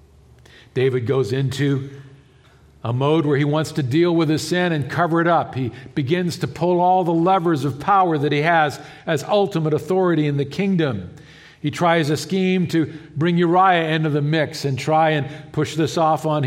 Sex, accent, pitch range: male, American, 125-160 Hz